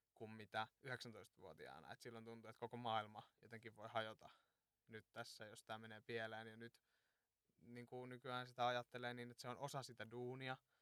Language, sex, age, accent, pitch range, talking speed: Finnish, male, 20-39, native, 110-125 Hz, 165 wpm